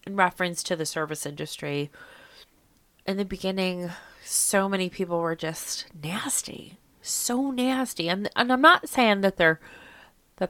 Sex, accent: female, American